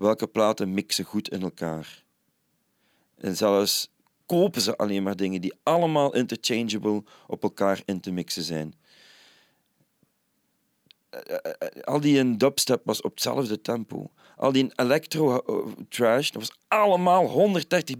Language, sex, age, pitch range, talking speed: Dutch, male, 40-59, 120-165 Hz, 120 wpm